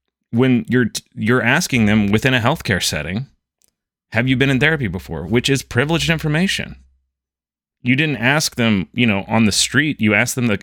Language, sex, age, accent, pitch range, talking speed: English, male, 30-49, American, 95-125 Hz, 180 wpm